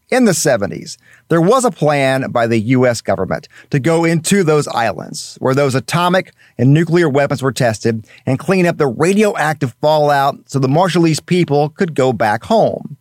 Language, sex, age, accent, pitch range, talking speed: English, male, 40-59, American, 130-175 Hz, 175 wpm